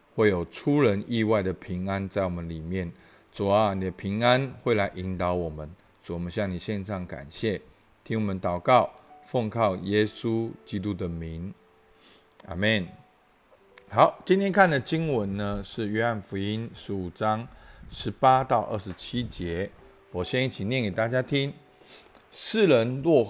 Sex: male